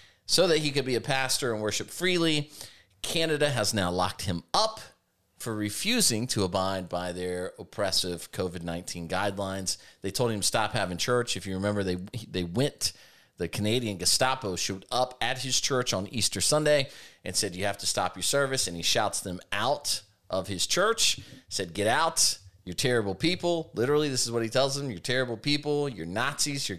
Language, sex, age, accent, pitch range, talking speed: English, male, 30-49, American, 95-130 Hz, 190 wpm